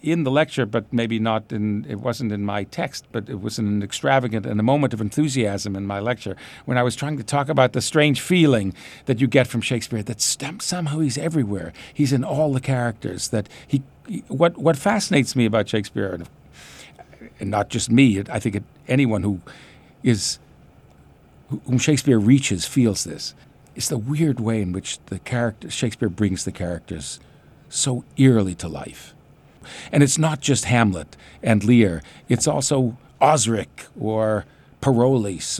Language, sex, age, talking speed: English, male, 50-69, 170 wpm